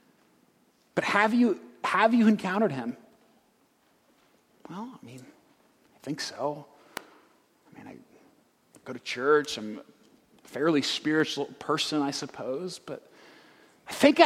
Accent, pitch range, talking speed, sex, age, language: American, 145-215 Hz, 120 wpm, male, 40-59, English